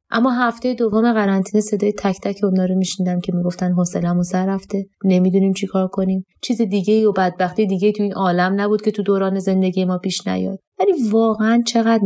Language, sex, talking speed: Persian, female, 190 wpm